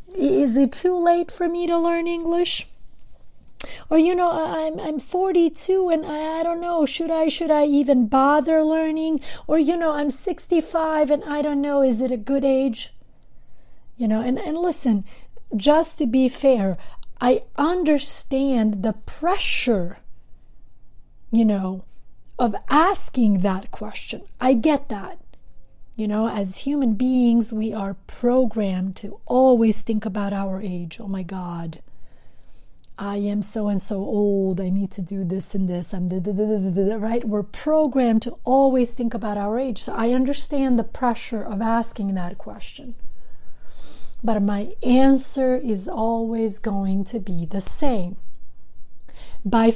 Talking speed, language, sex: 150 wpm, English, female